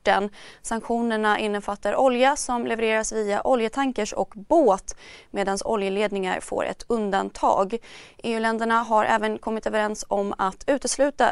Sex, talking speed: female, 115 wpm